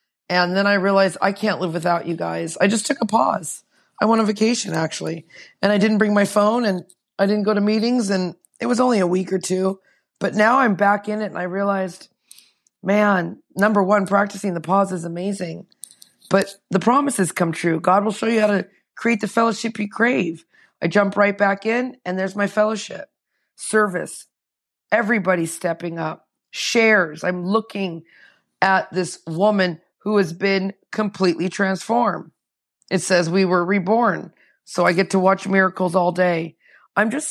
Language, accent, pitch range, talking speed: English, American, 180-210 Hz, 180 wpm